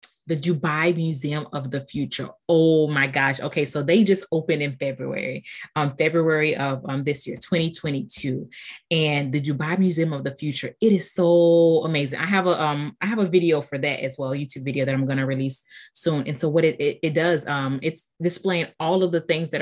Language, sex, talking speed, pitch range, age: English, female, 215 wpm, 140-175 Hz, 20-39